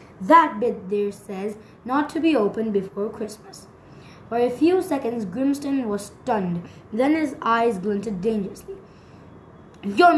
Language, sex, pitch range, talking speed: English, female, 205-280 Hz, 135 wpm